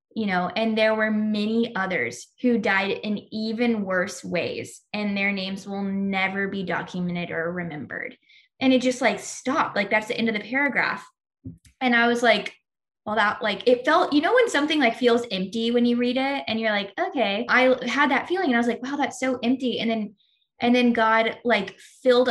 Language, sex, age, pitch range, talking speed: English, female, 10-29, 210-255 Hz, 205 wpm